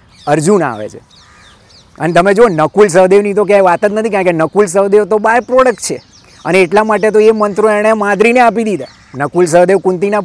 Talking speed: 200 wpm